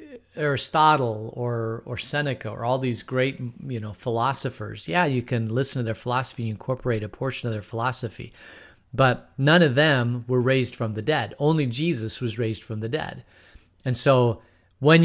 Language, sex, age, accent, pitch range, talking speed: English, male, 40-59, American, 110-145 Hz, 175 wpm